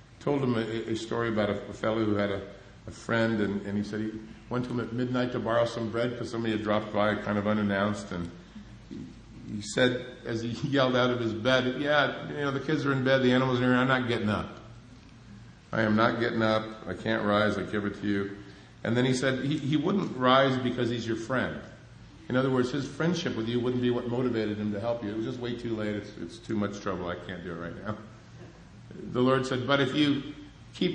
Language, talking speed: English, 245 wpm